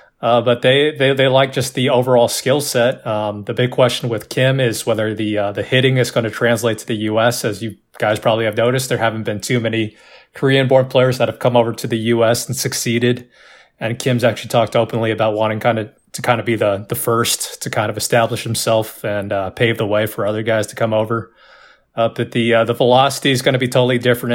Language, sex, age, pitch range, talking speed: English, male, 20-39, 110-125 Hz, 240 wpm